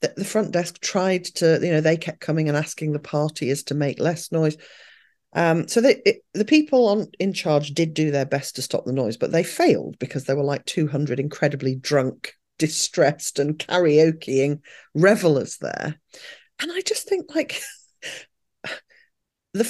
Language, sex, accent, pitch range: English, female, British, 145-215 Hz